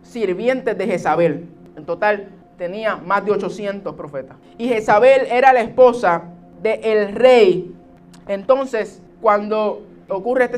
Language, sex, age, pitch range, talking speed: Spanish, male, 20-39, 175-245 Hz, 120 wpm